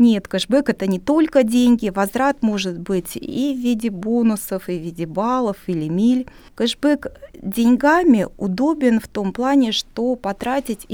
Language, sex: Russian, female